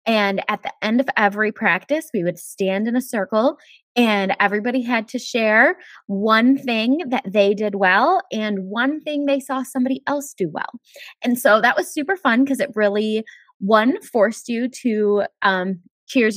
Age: 20-39